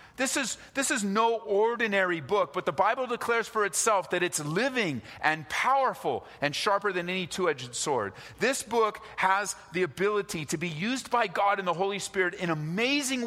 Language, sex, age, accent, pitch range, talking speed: English, male, 40-59, American, 150-195 Hz, 180 wpm